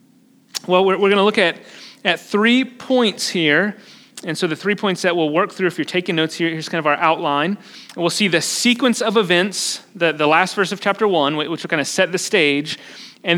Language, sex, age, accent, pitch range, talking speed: English, male, 30-49, American, 165-215 Hz, 230 wpm